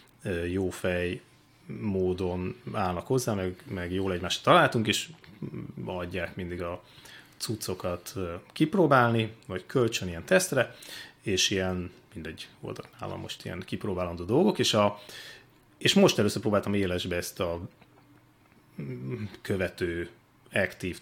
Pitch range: 100-145 Hz